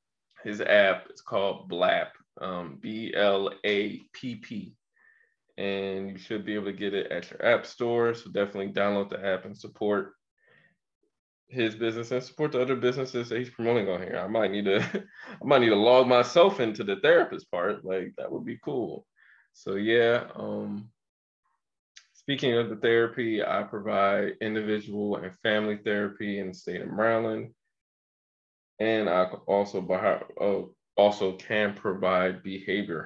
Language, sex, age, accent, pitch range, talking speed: English, male, 20-39, American, 95-120 Hz, 155 wpm